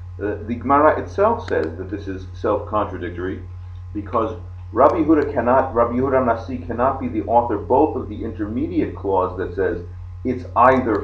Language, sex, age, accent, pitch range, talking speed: English, male, 50-69, American, 90-110 Hz, 140 wpm